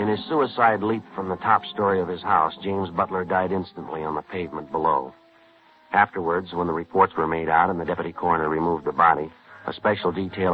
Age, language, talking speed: 60-79, English, 205 wpm